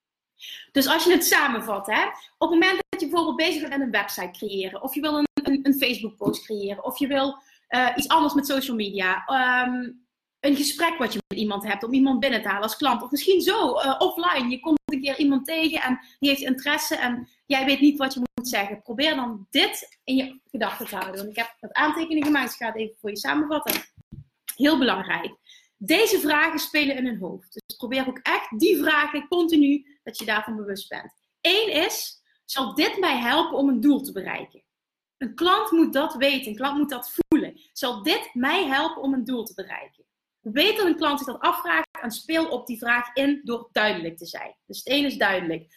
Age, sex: 30-49, female